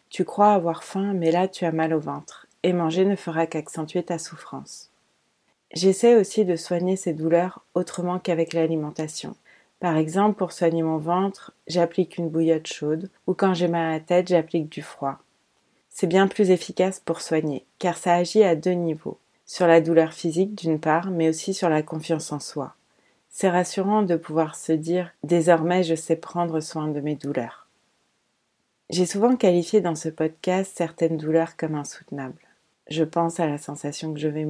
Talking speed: 180 wpm